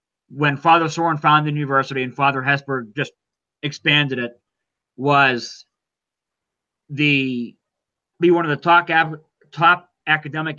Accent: American